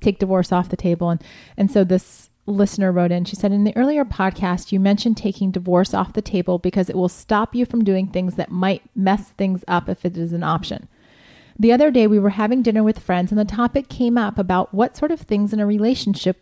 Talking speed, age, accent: 240 wpm, 30-49, American